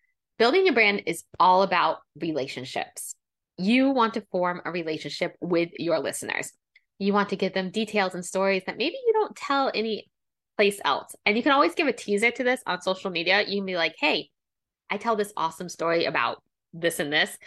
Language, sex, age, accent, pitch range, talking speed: English, female, 20-39, American, 175-225 Hz, 200 wpm